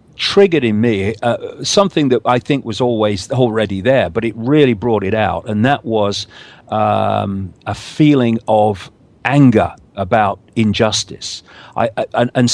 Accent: British